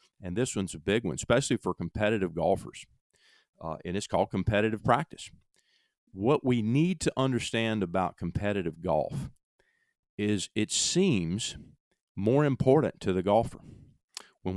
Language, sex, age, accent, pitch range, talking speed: English, male, 40-59, American, 100-125 Hz, 135 wpm